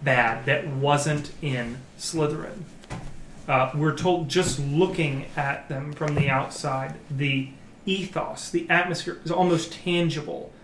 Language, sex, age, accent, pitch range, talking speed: English, male, 30-49, American, 130-160 Hz, 125 wpm